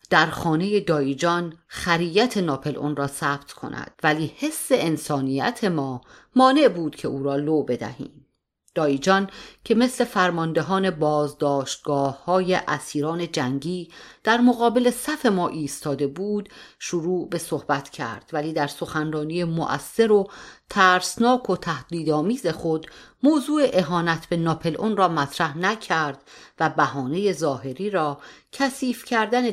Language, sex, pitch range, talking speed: Persian, female, 155-220 Hz, 120 wpm